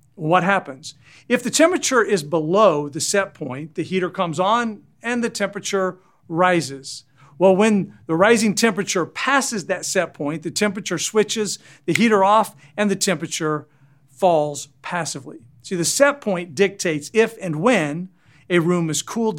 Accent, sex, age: American, male, 50-69